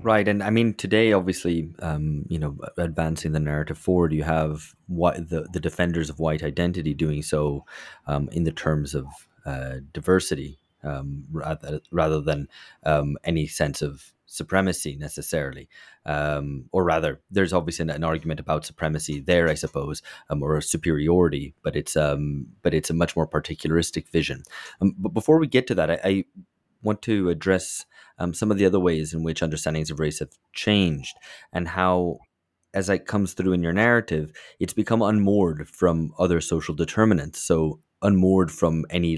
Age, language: 30-49, English